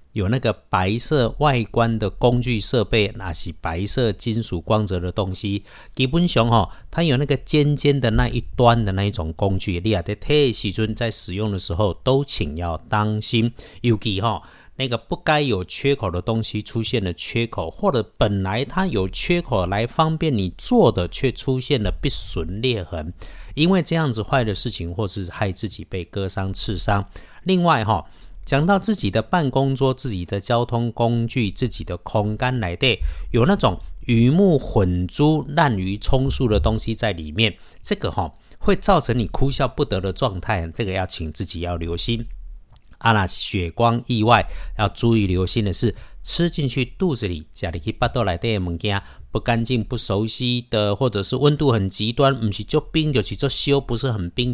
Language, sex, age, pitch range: Chinese, male, 50-69, 95-130 Hz